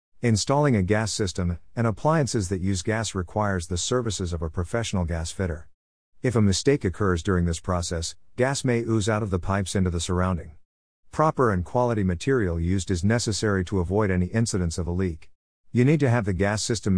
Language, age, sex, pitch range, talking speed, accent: English, 50-69, male, 90-110 Hz, 195 wpm, American